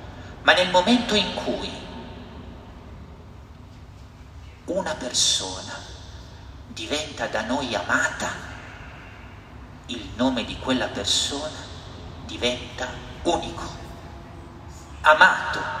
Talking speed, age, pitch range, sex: 70 wpm, 50-69, 90-130 Hz, male